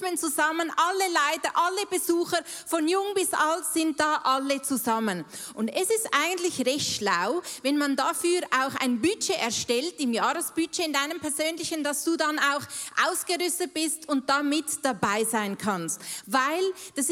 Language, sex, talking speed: German, female, 155 wpm